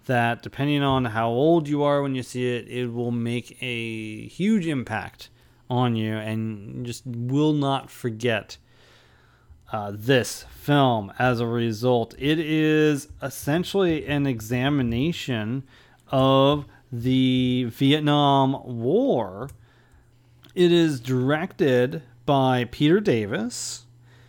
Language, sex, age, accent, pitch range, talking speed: English, male, 30-49, American, 120-155 Hz, 110 wpm